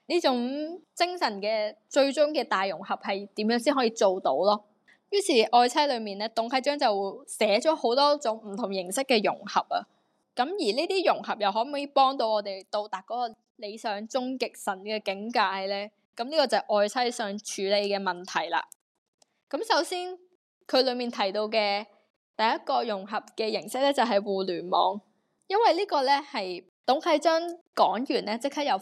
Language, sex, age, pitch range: Chinese, female, 10-29, 205-270 Hz